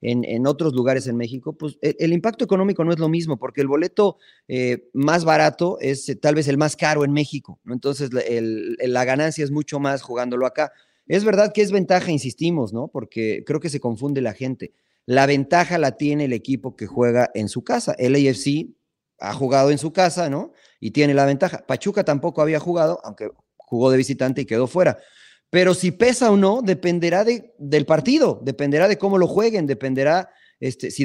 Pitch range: 130-170 Hz